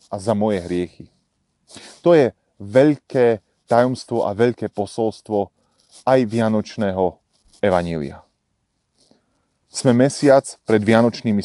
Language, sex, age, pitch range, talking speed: Slovak, male, 30-49, 100-125 Hz, 95 wpm